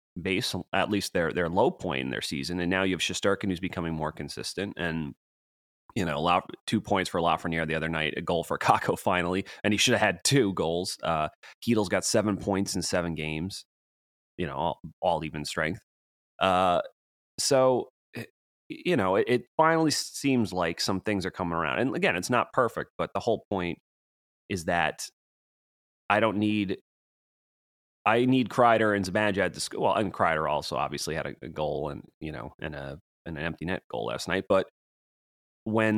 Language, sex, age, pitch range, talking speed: English, male, 30-49, 80-105 Hz, 190 wpm